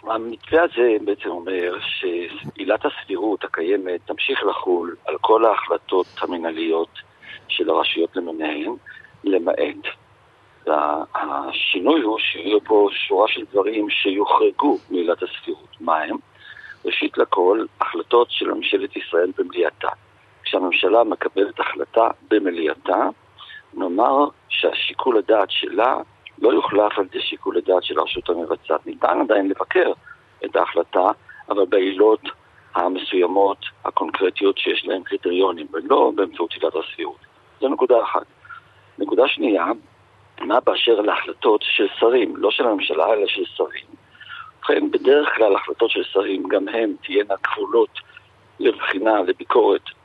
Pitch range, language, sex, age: 345-440 Hz, Hebrew, male, 50-69